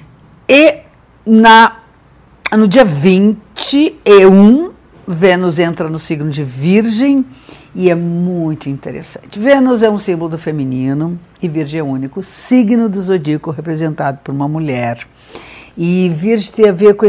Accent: Brazilian